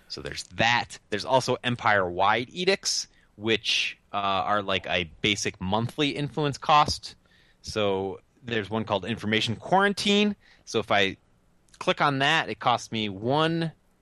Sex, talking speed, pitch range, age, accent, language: male, 135 wpm, 90-125 Hz, 20-39, American, English